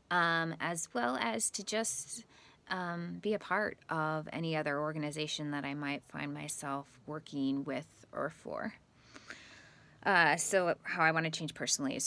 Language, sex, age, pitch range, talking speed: English, female, 20-39, 155-190 Hz, 160 wpm